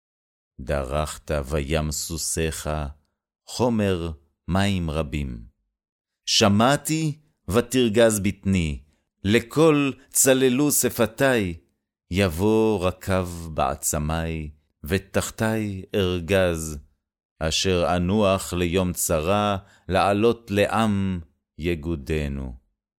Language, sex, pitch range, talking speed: Hebrew, male, 80-110 Hz, 65 wpm